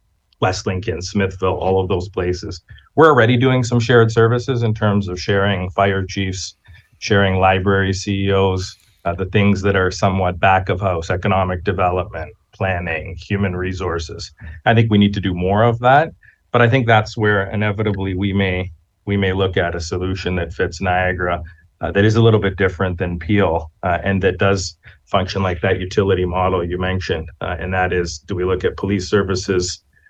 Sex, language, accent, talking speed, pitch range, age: male, English, American, 180 wpm, 90-105 Hz, 30-49